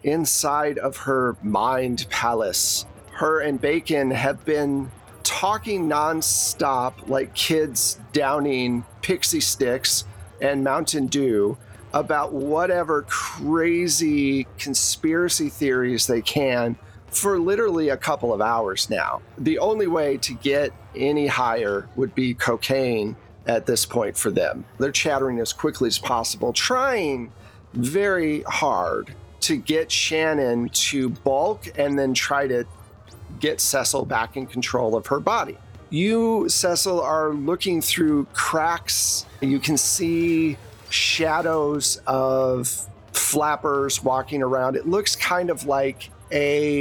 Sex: male